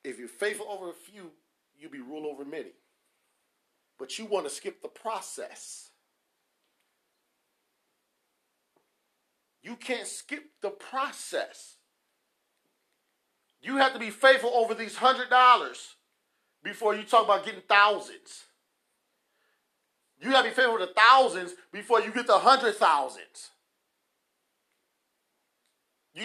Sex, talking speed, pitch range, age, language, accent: male, 115 wpm, 210-270 Hz, 40-59, English, American